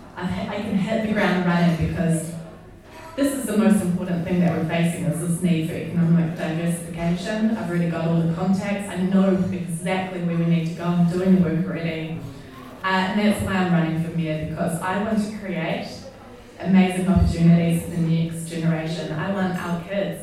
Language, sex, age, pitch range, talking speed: English, female, 20-39, 165-195 Hz, 190 wpm